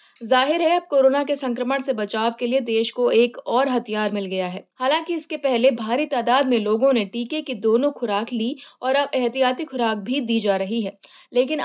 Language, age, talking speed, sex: Hindi, 20-39, 210 wpm, female